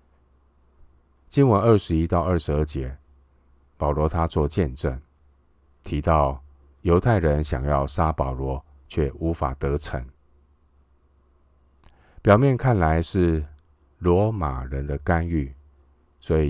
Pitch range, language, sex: 70-80 Hz, Chinese, male